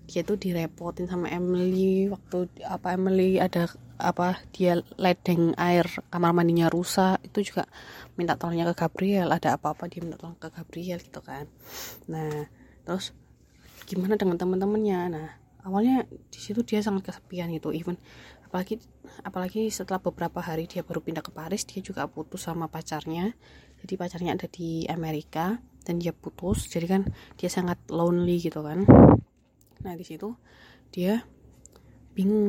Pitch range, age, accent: 165-190 Hz, 20-39, native